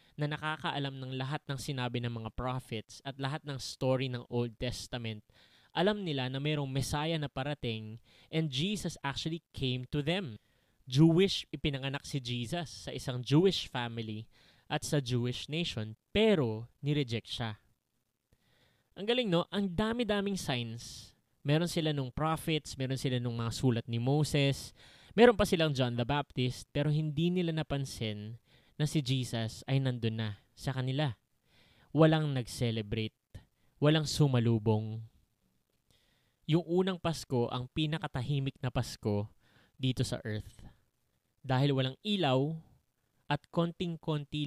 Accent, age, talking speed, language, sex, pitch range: Filipino, 20-39, 130 wpm, English, male, 120-155 Hz